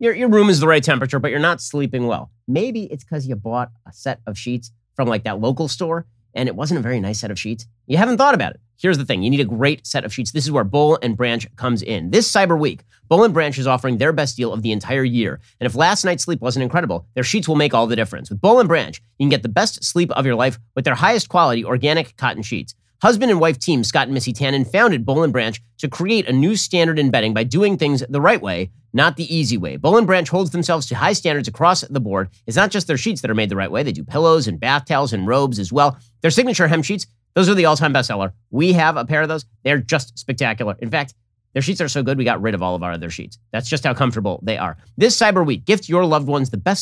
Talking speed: 280 wpm